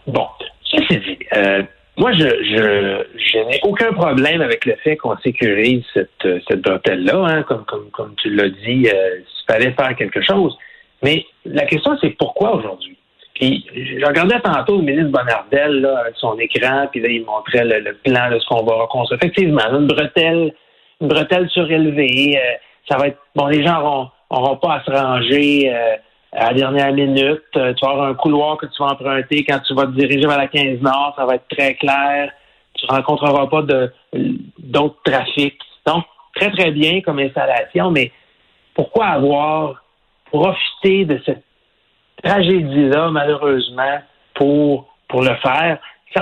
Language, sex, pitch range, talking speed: French, male, 125-155 Hz, 175 wpm